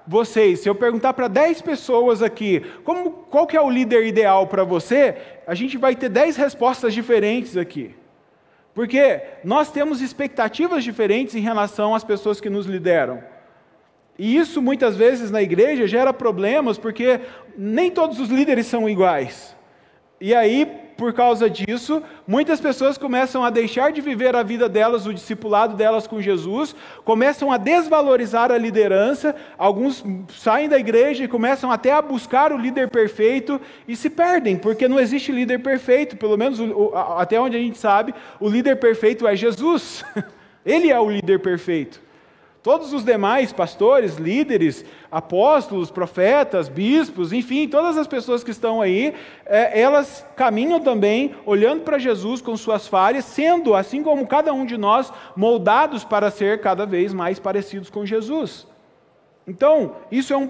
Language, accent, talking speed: Portuguese, Brazilian, 155 wpm